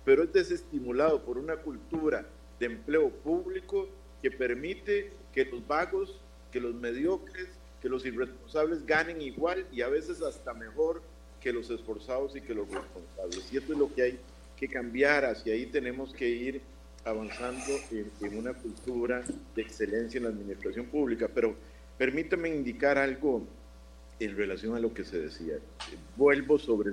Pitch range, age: 115-180 Hz, 50-69